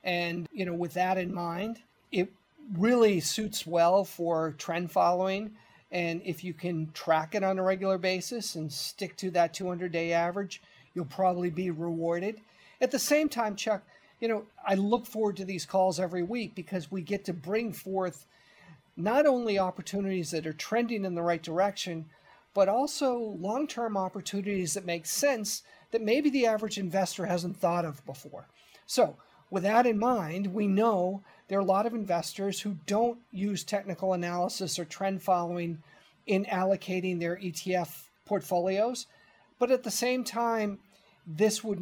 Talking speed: 165 wpm